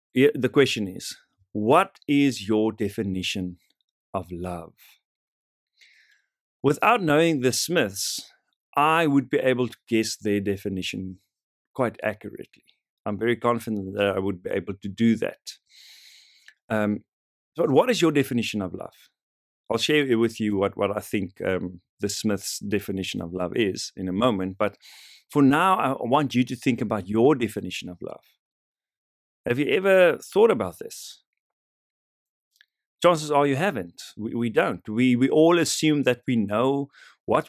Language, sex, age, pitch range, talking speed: English, male, 50-69, 100-140 Hz, 150 wpm